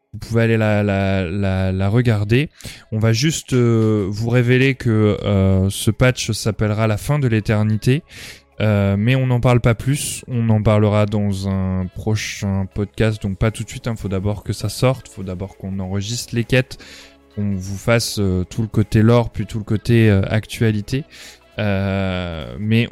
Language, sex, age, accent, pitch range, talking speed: French, male, 20-39, French, 105-125 Hz, 185 wpm